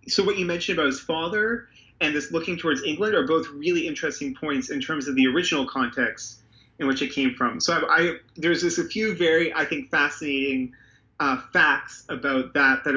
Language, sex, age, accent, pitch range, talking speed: English, male, 30-49, American, 130-170 Hz, 205 wpm